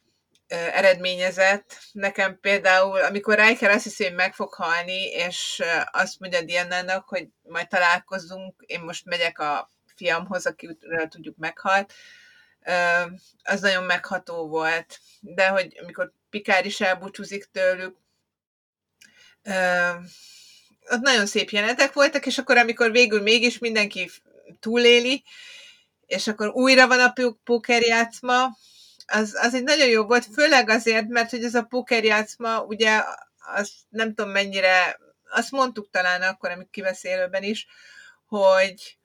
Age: 30-49